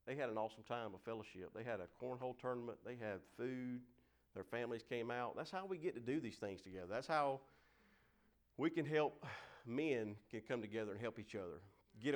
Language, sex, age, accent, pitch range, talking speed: English, male, 40-59, American, 95-120 Hz, 205 wpm